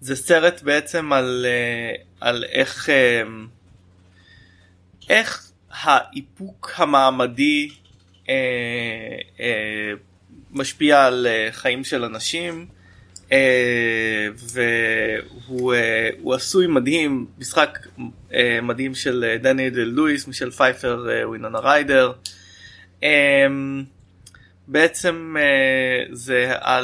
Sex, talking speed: male, 80 wpm